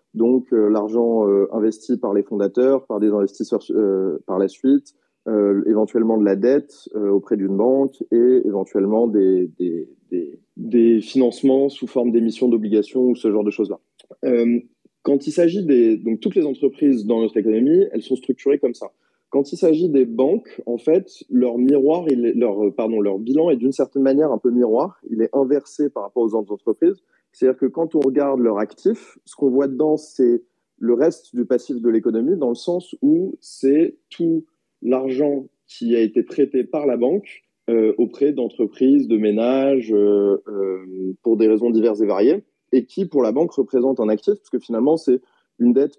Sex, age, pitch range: male, 20-39, 105-140 Hz